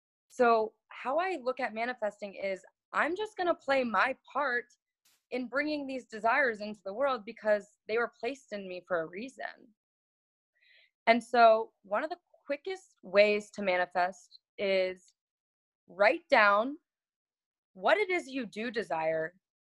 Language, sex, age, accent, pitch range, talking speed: English, female, 20-39, American, 190-265 Hz, 145 wpm